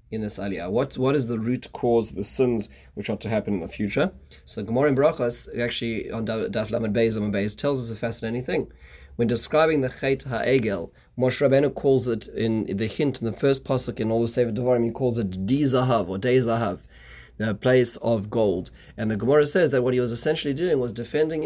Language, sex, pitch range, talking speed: English, male, 110-135 Hz, 210 wpm